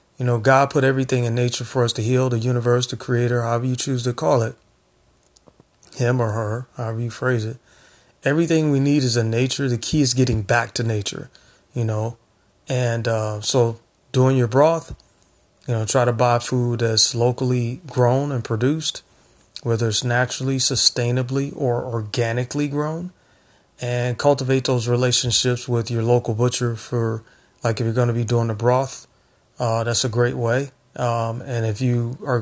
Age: 30-49